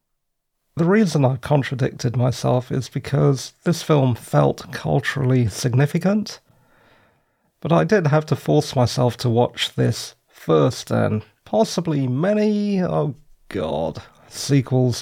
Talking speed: 115 wpm